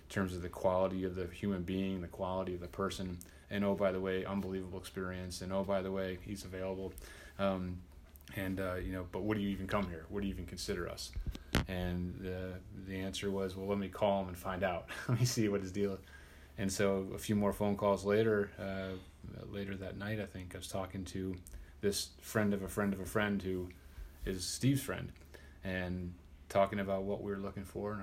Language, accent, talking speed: English, American, 220 wpm